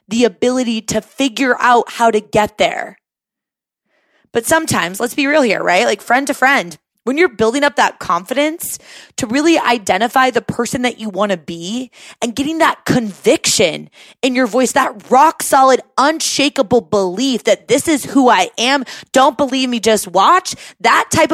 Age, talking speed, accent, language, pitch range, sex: 20-39, 170 wpm, American, English, 215-280 Hz, female